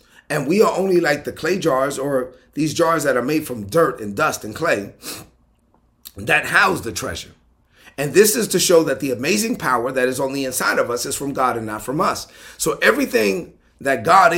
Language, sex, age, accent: English, male, 30-49, American